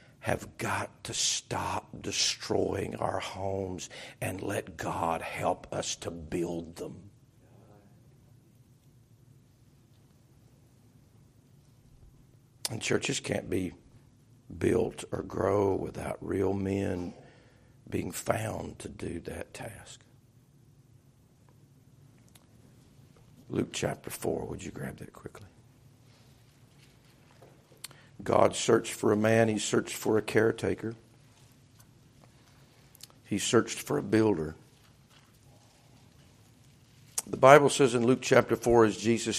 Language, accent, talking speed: English, American, 95 wpm